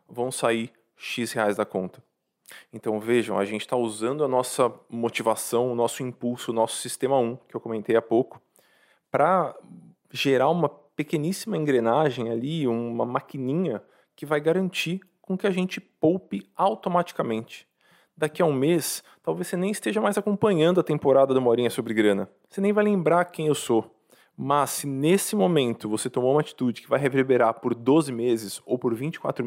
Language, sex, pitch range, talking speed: Portuguese, male, 115-160 Hz, 170 wpm